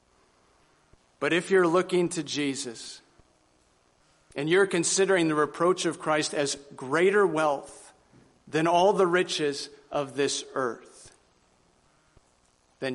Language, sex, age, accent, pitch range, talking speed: English, male, 50-69, American, 115-150 Hz, 110 wpm